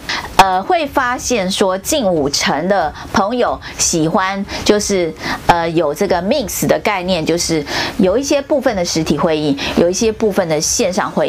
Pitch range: 175-250 Hz